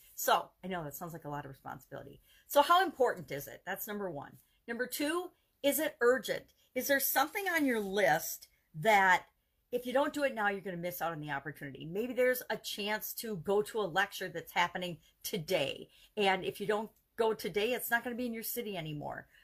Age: 50-69